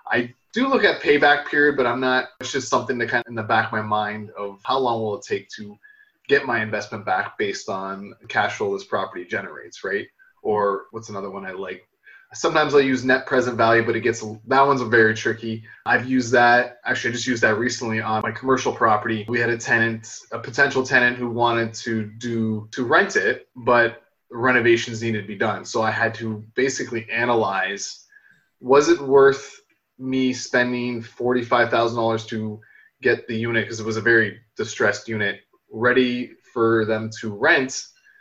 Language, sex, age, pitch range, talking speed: English, male, 20-39, 115-140 Hz, 195 wpm